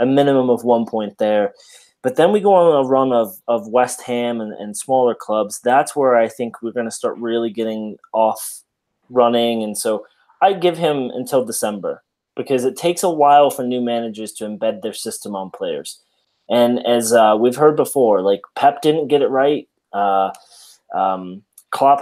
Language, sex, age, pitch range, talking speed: English, male, 20-39, 110-135 Hz, 190 wpm